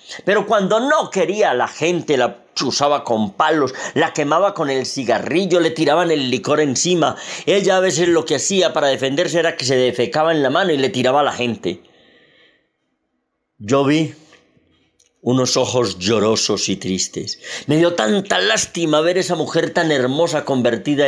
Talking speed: 165 wpm